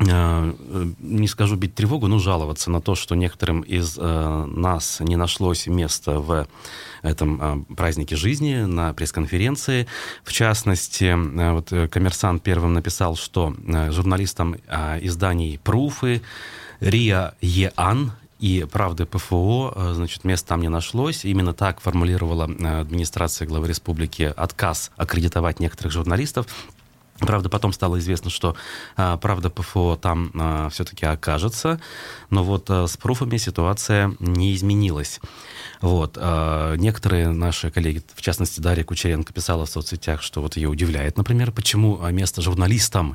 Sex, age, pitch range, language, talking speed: male, 30-49, 85-100 Hz, Russian, 120 wpm